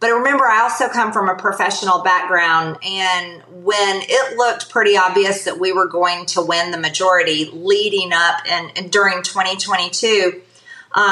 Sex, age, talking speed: female, 30-49, 155 wpm